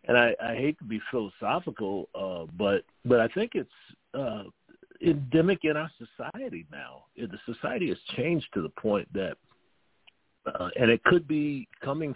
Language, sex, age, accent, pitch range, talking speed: English, male, 50-69, American, 100-125 Hz, 160 wpm